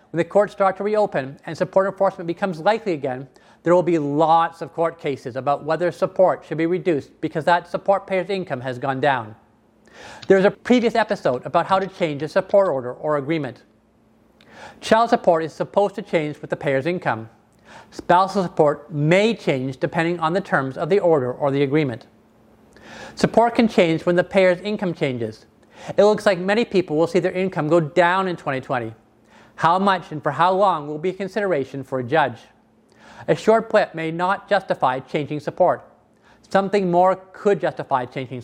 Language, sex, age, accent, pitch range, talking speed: English, male, 40-59, American, 145-195 Hz, 185 wpm